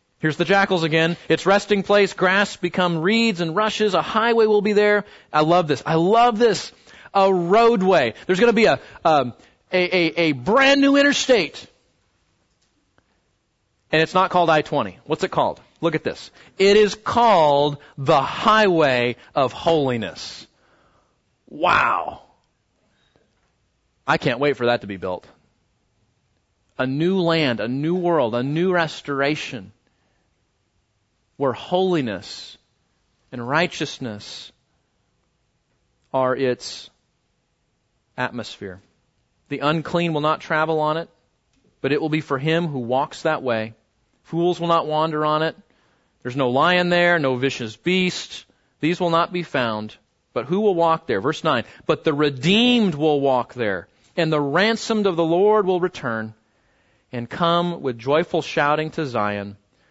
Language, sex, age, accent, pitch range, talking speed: English, male, 30-49, American, 125-180 Hz, 140 wpm